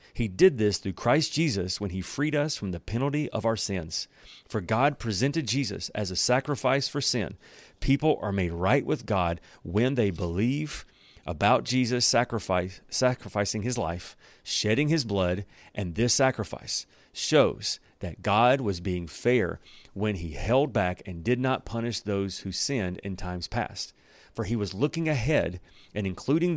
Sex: male